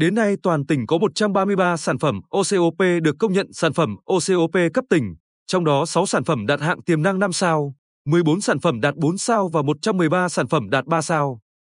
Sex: male